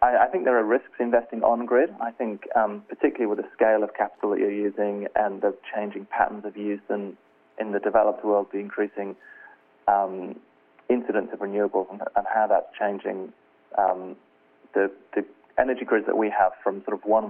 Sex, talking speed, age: male, 185 wpm, 30-49